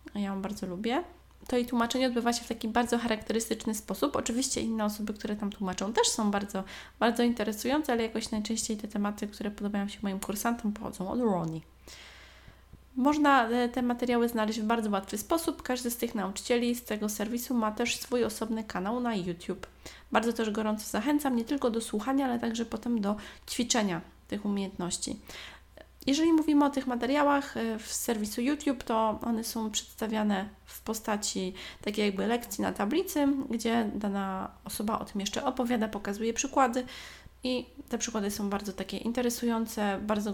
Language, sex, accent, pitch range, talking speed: Polish, female, native, 205-245 Hz, 165 wpm